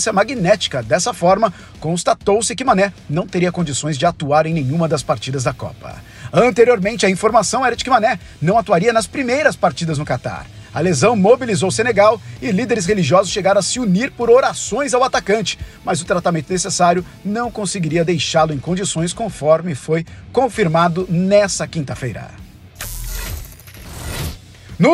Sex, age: male, 50-69